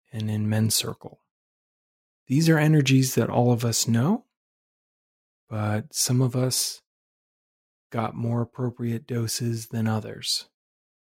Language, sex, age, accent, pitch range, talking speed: English, male, 30-49, American, 110-125 Hz, 120 wpm